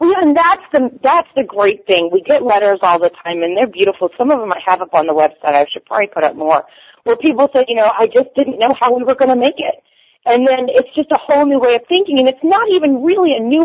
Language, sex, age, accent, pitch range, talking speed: English, female, 30-49, American, 205-280 Hz, 285 wpm